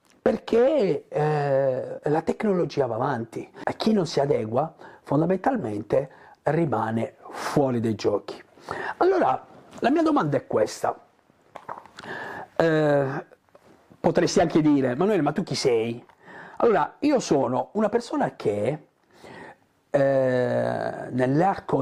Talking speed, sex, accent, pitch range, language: 105 wpm, male, native, 125-165 Hz, Italian